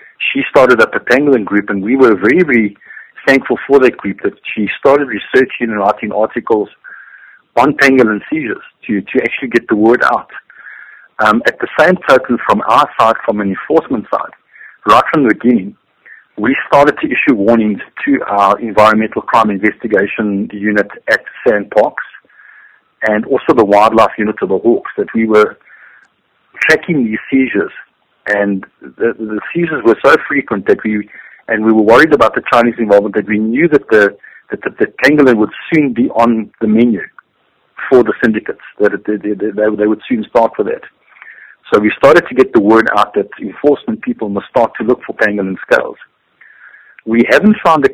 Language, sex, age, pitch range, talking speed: English, male, 50-69, 105-135 Hz, 180 wpm